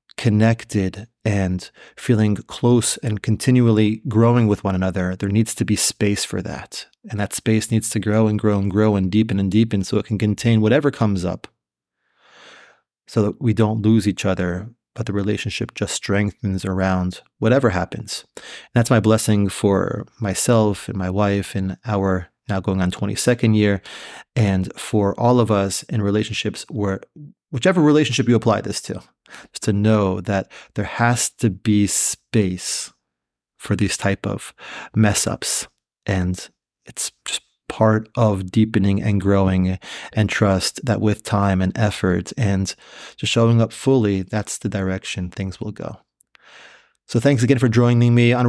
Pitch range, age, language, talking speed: 100-115 Hz, 30-49, English, 160 wpm